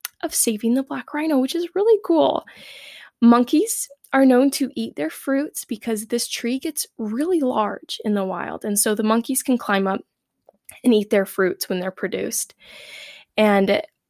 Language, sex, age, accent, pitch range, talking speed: English, female, 10-29, American, 205-270 Hz, 170 wpm